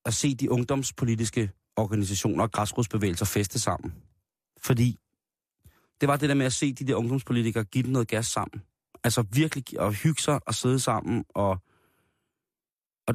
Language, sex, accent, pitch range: Danish, male, native, 110-135 Hz